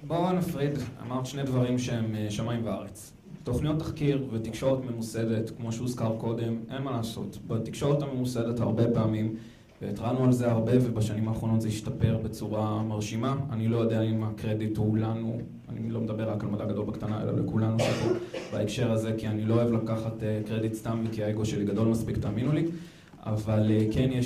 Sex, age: male, 20-39